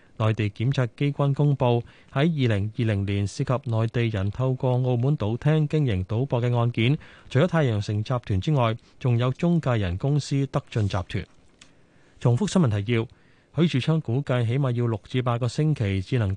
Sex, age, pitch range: male, 20-39, 110-145 Hz